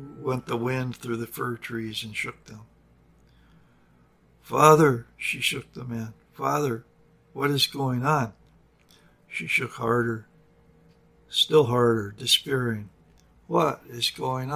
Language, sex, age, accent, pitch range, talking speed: English, male, 60-79, American, 110-125 Hz, 120 wpm